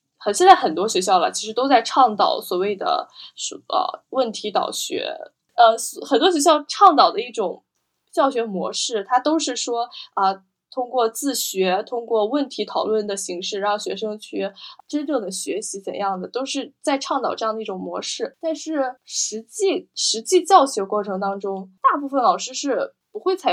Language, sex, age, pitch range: Chinese, female, 10-29, 200-280 Hz